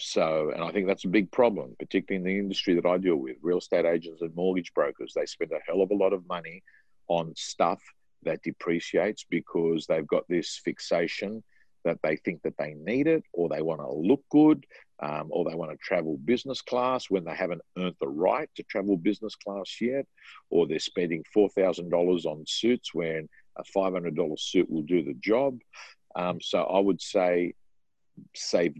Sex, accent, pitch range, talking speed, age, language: male, Australian, 85-125 Hz, 190 wpm, 50-69, English